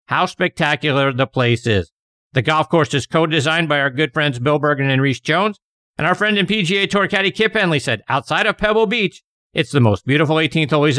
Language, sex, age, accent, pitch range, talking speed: English, male, 50-69, American, 135-190 Hz, 220 wpm